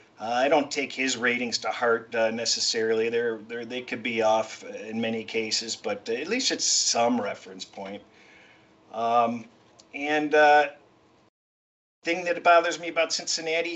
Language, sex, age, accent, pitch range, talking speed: English, male, 50-69, American, 125-170 Hz, 160 wpm